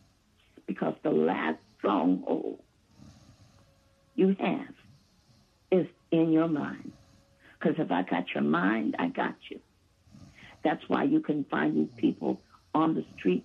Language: English